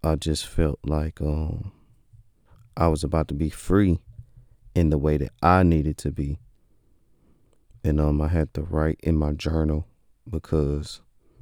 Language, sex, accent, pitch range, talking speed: English, male, American, 75-85 Hz, 150 wpm